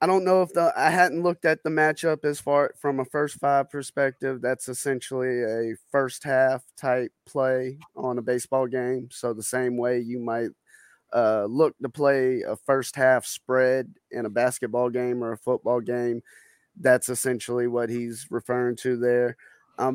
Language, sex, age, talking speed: English, male, 20-39, 175 wpm